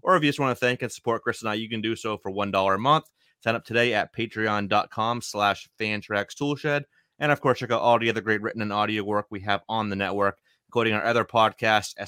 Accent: American